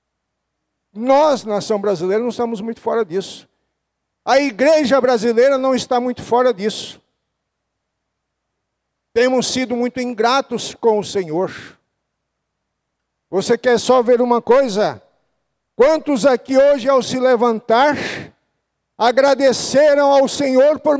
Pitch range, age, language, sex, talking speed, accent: 225-275 Hz, 60-79, Portuguese, male, 110 wpm, Brazilian